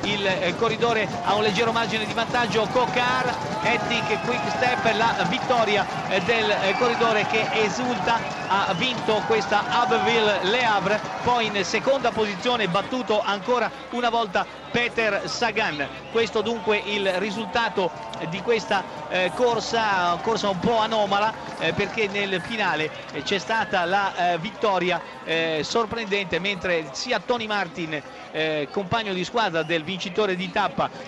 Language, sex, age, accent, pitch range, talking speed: Italian, male, 50-69, native, 165-215 Hz, 120 wpm